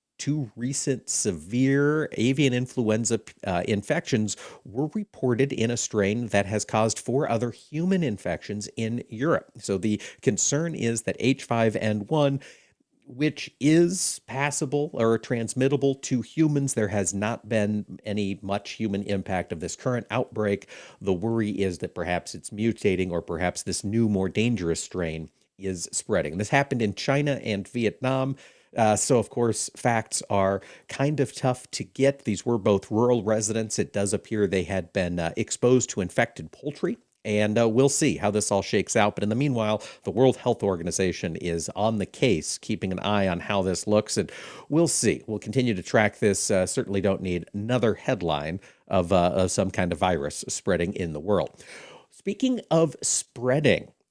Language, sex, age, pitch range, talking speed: English, male, 50-69, 100-130 Hz, 165 wpm